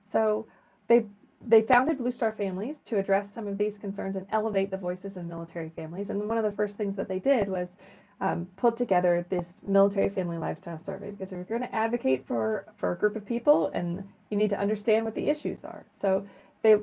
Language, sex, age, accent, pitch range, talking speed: English, female, 40-59, American, 185-220 Hz, 220 wpm